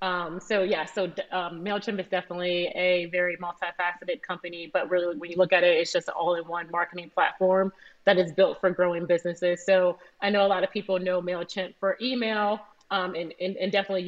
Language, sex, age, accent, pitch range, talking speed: English, female, 30-49, American, 175-190 Hz, 200 wpm